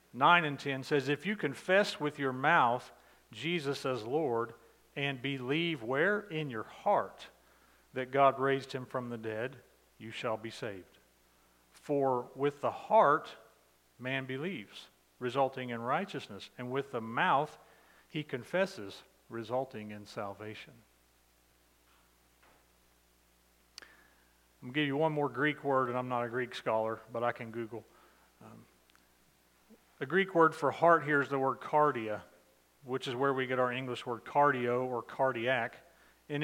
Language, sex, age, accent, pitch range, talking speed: English, male, 40-59, American, 105-145 Hz, 145 wpm